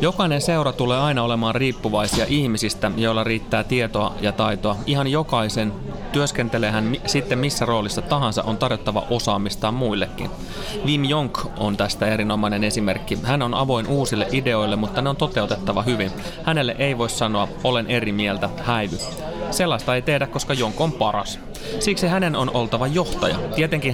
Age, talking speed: 30-49, 155 wpm